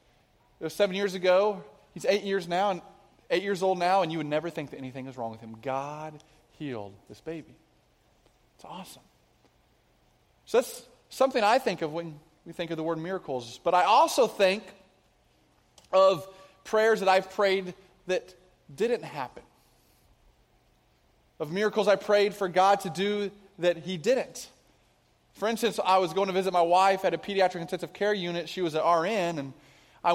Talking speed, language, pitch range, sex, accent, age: 175 wpm, English, 155-190 Hz, male, American, 20-39